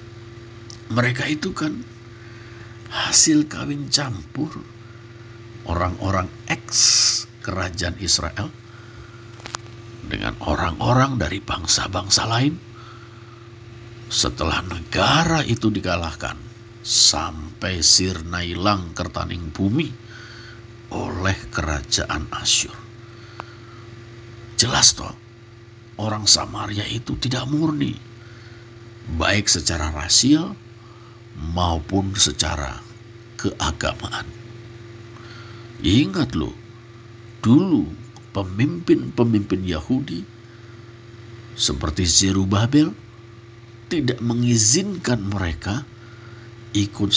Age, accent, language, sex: 50-69, native, Indonesian, male